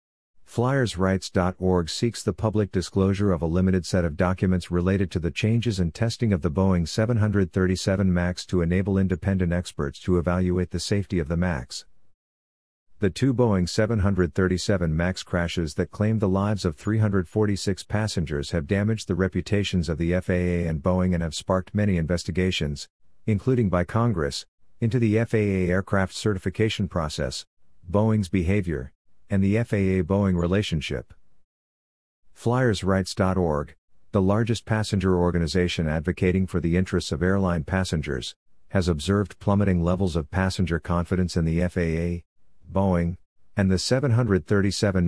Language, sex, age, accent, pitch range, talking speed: English, male, 50-69, American, 85-100 Hz, 135 wpm